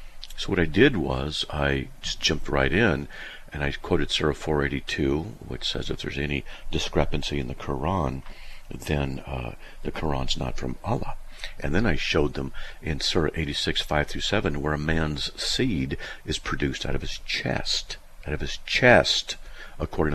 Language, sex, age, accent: English, male, 50-69, American